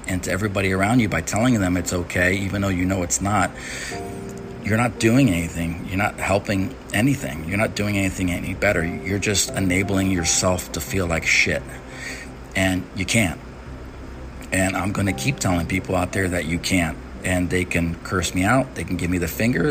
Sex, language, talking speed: male, English, 200 wpm